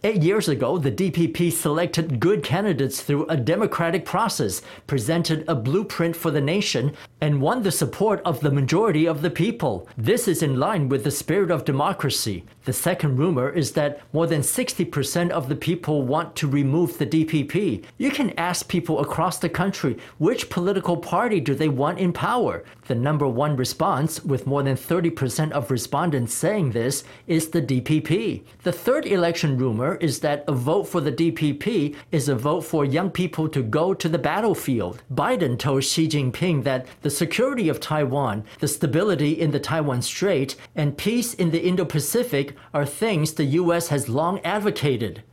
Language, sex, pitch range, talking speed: English, male, 140-175 Hz, 175 wpm